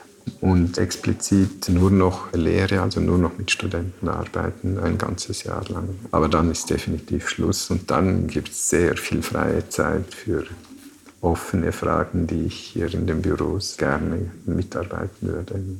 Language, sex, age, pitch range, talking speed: German, male, 50-69, 85-95 Hz, 150 wpm